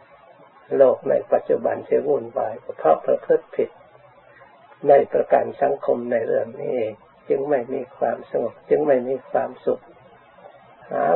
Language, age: Thai, 60-79